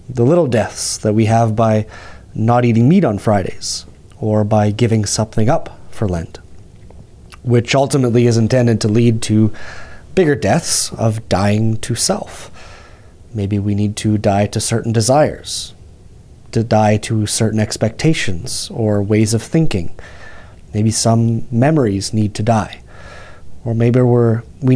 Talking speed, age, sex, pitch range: 140 wpm, 30-49, male, 100-120 Hz